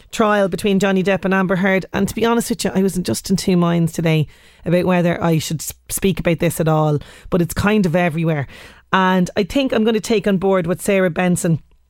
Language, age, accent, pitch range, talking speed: English, 30-49, Irish, 170-195 Hz, 230 wpm